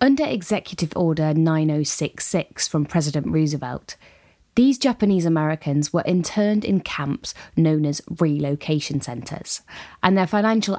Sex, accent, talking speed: female, British, 110 wpm